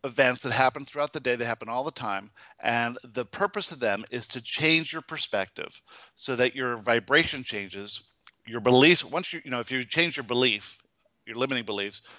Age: 50-69